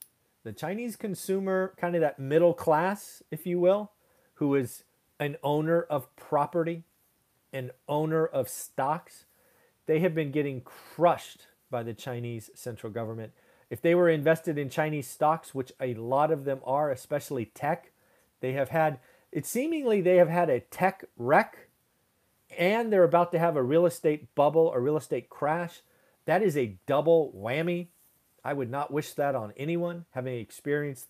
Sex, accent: male, American